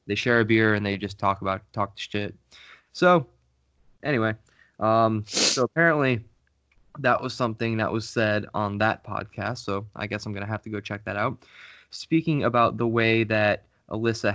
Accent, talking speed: American, 185 wpm